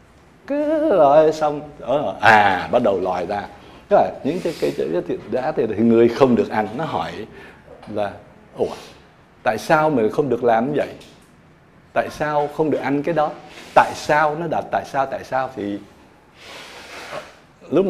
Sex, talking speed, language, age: male, 170 wpm, Vietnamese, 60-79